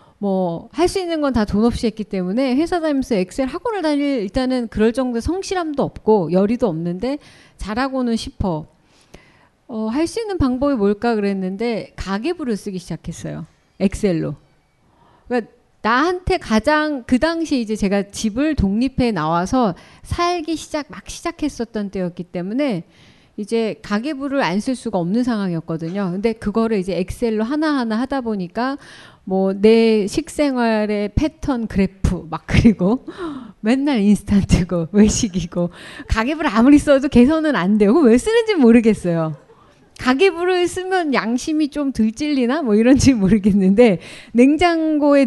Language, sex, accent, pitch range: Korean, female, native, 210-300 Hz